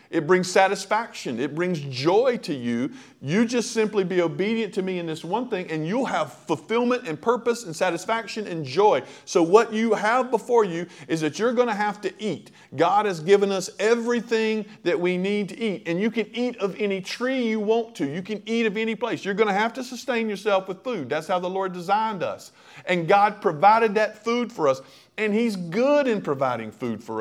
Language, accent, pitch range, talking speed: English, American, 185-235 Hz, 215 wpm